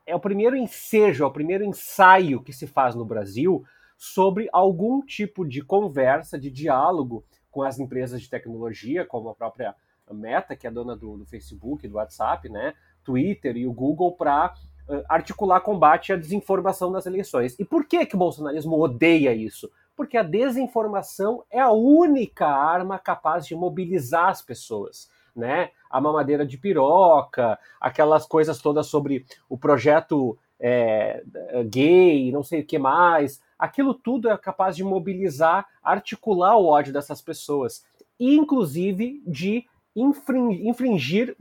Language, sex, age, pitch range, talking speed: Portuguese, male, 30-49, 155-210 Hz, 145 wpm